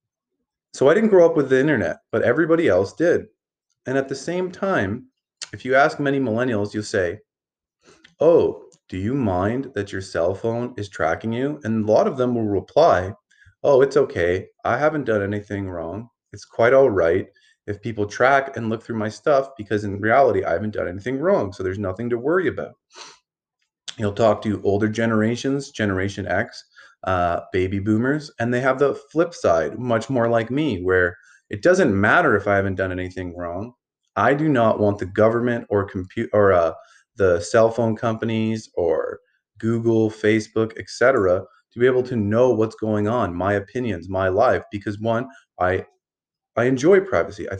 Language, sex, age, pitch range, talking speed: English, male, 30-49, 105-135 Hz, 180 wpm